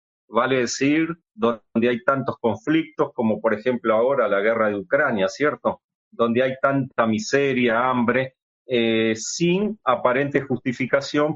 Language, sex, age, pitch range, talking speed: Spanish, male, 40-59, 120-150 Hz, 125 wpm